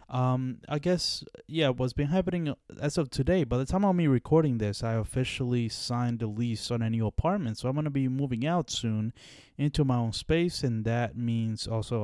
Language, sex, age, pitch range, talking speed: English, male, 20-39, 115-145 Hz, 215 wpm